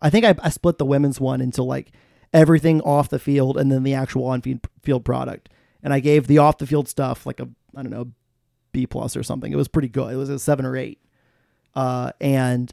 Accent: American